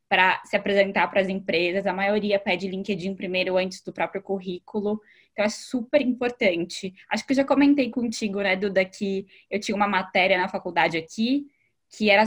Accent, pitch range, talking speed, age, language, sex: Brazilian, 190-230 Hz, 180 wpm, 10-29, Portuguese, female